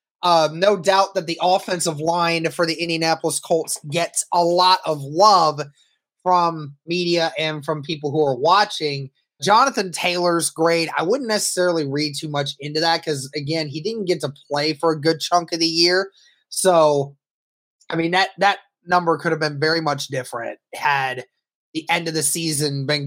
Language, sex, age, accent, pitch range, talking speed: English, male, 20-39, American, 155-200 Hz, 175 wpm